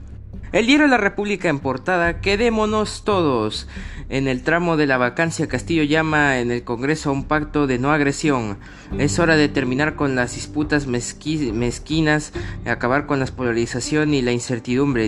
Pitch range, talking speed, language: 120-145 Hz, 165 wpm, Spanish